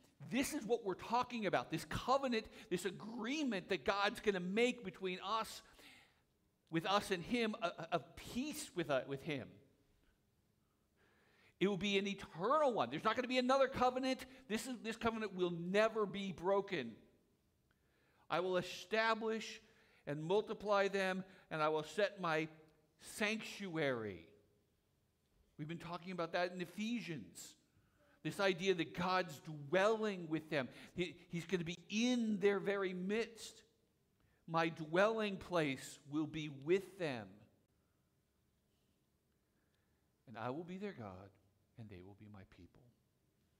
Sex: male